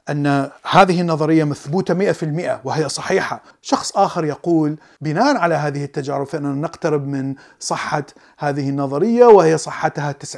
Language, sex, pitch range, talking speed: Arabic, male, 135-175 Hz, 135 wpm